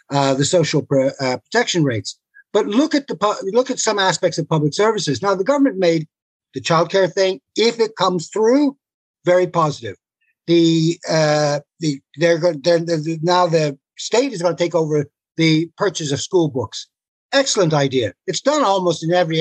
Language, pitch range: English, 155-210 Hz